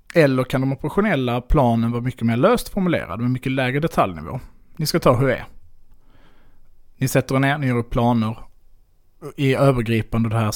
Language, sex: Swedish, male